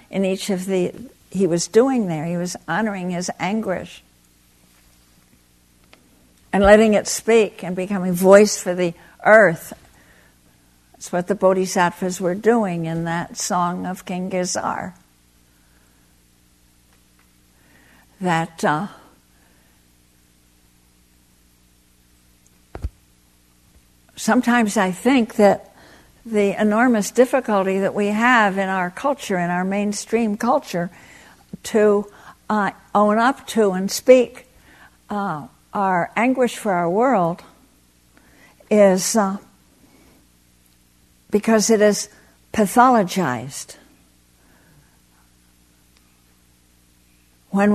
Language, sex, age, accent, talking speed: English, female, 60-79, American, 95 wpm